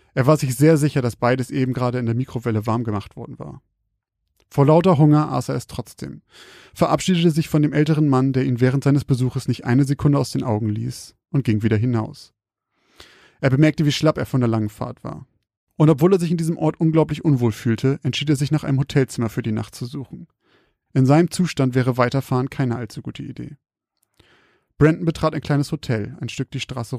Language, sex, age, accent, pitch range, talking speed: German, male, 30-49, German, 120-150 Hz, 210 wpm